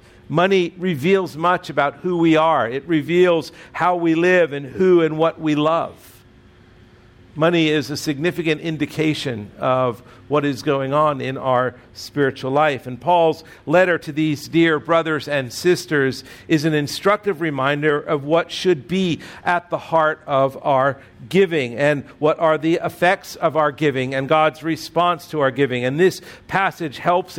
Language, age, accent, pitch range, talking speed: English, 50-69, American, 135-170 Hz, 160 wpm